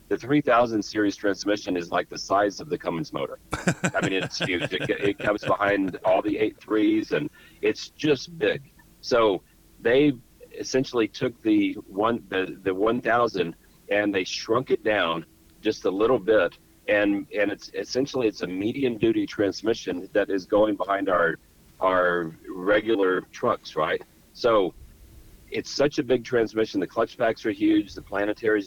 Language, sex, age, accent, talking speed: English, male, 40-59, American, 160 wpm